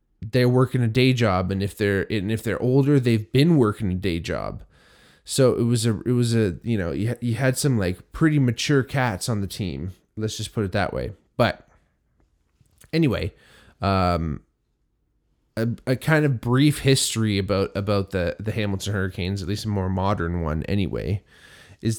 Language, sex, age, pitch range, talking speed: English, male, 20-39, 95-120 Hz, 185 wpm